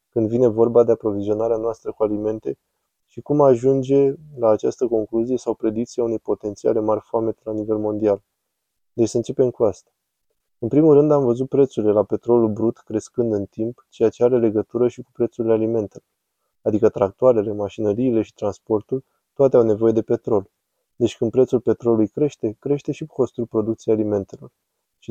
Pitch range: 110-120 Hz